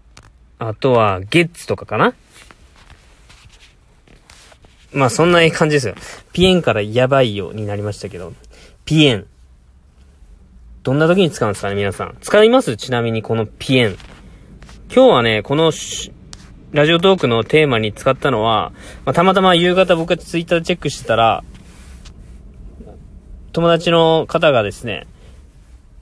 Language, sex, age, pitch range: Japanese, male, 20-39, 105-155 Hz